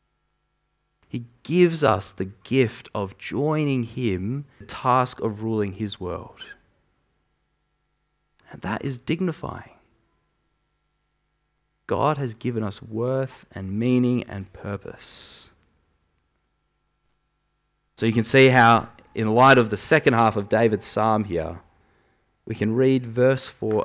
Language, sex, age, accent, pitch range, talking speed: English, male, 20-39, Australian, 105-135 Hz, 120 wpm